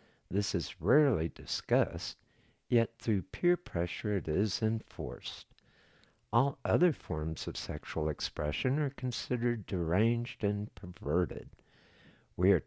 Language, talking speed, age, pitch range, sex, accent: English, 115 wpm, 60-79, 85-125 Hz, male, American